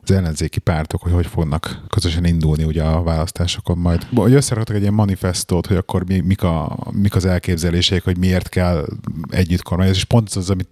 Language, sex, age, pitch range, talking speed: Hungarian, male, 30-49, 90-105 Hz, 185 wpm